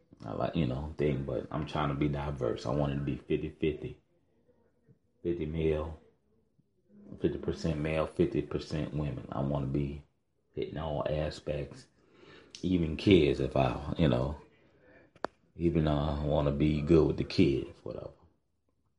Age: 30-49